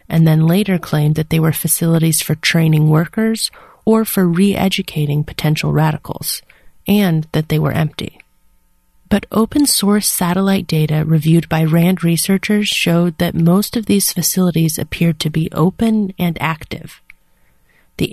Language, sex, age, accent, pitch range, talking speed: English, female, 30-49, American, 160-200 Hz, 140 wpm